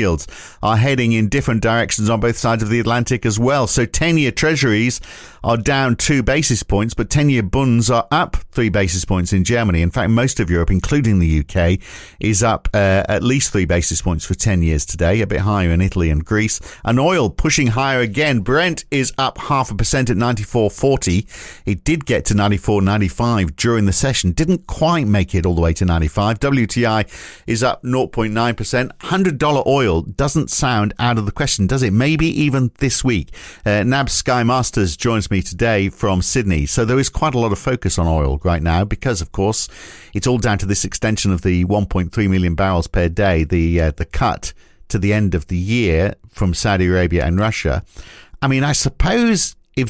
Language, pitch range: English, 95-130 Hz